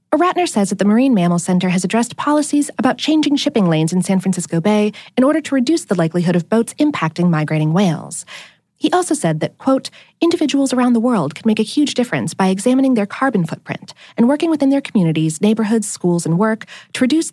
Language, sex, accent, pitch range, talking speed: English, female, American, 175-260 Hz, 205 wpm